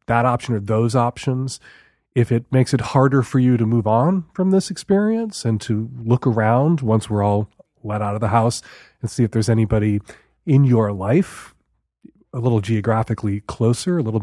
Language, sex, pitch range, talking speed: English, male, 120-165 Hz, 185 wpm